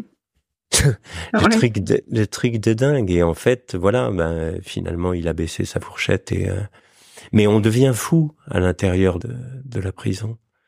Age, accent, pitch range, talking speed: 50-69, French, 100-130 Hz, 170 wpm